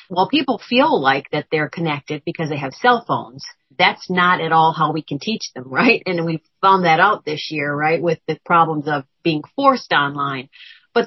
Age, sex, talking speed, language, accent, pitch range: 40-59, female, 205 wpm, English, American, 150-195 Hz